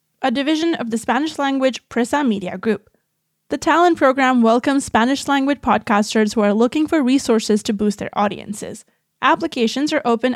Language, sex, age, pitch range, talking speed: English, female, 20-39, 220-280 Hz, 150 wpm